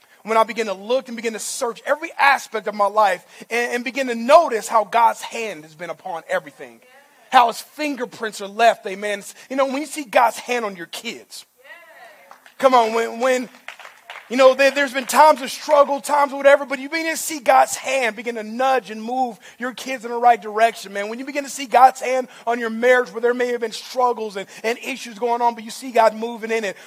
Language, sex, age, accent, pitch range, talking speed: English, male, 30-49, American, 235-360 Hz, 230 wpm